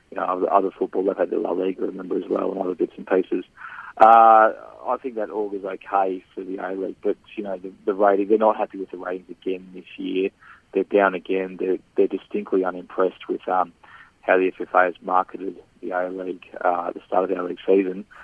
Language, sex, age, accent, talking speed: English, male, 20-39, Australian, 225 wpm